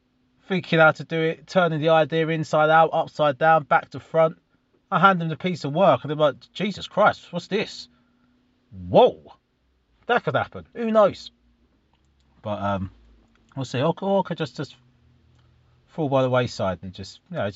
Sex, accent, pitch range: male, British, 105-160 Hz